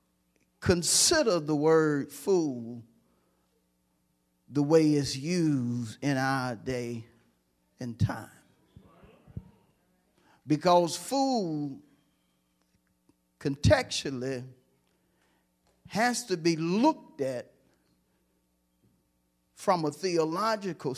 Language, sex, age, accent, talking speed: English, male, 50-69, American, 70 wpm